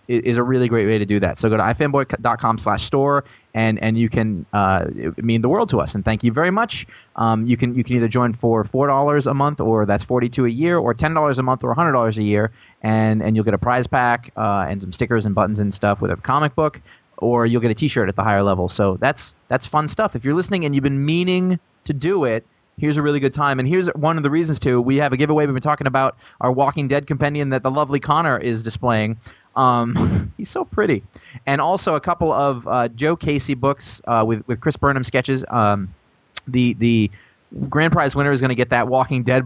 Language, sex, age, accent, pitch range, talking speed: English, male, 20-39, American, 110-140 Hz, 250 wpm